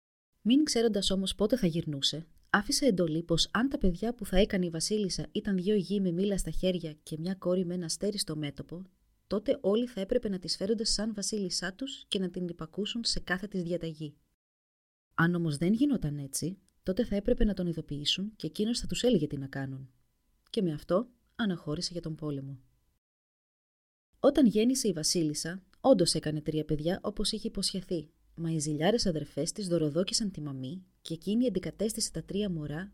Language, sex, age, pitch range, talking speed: Greek, female, 30-49, 155-210 Hz, 185 wpm